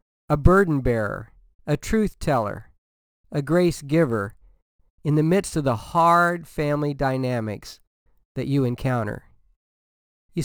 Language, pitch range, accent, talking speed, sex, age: English, 130-175 Hz, American, 120 wpm, male, 50-69